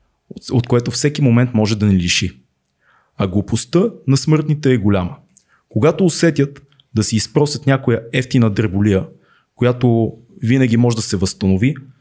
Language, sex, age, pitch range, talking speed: Bulgarian, male, 20-39, 110-140 Hz, 140 wpm